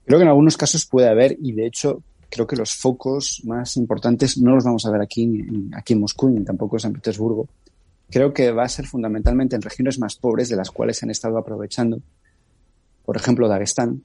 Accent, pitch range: Spanish, 110-130 Hz